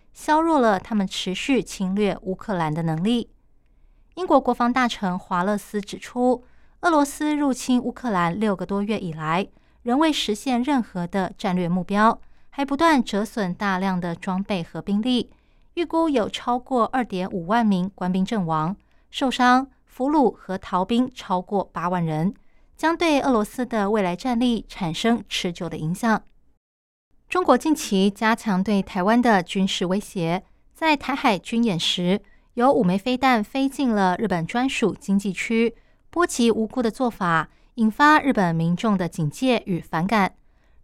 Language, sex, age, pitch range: Chinese, female, 20-39, 185-250 Hz